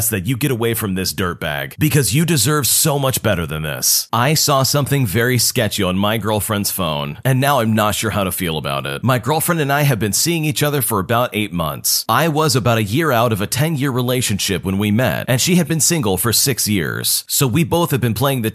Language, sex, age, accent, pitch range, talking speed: English, male, 40-59, American, 105-145 Hz, 245 wpm